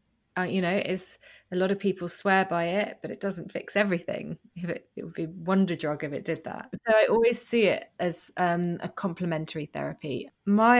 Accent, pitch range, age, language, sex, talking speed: British, 175-205 Hz, 20-39, English, female, 210 wpm